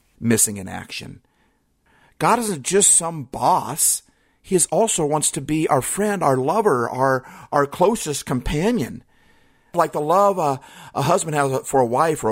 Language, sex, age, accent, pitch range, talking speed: English, male, 50-69, American, 140-200 Hz, 155 wpm